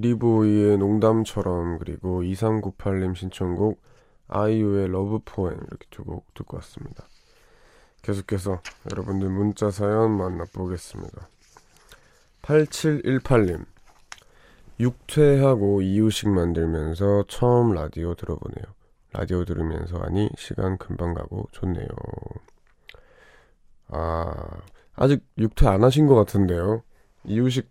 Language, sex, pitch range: Korean, male, 90-115 Hz